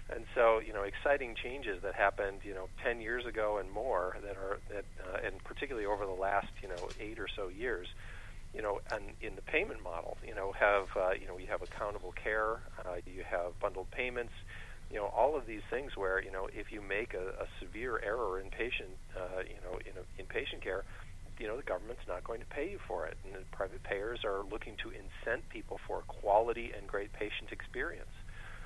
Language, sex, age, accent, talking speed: English, male, 40-59, American, 200 wpm